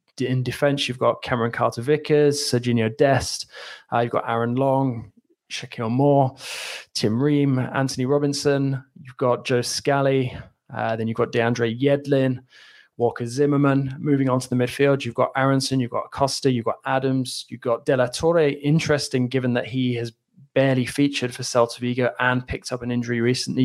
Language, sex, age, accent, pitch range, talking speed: English, male, 20-39, British, 120-140 Hz, 165 wpm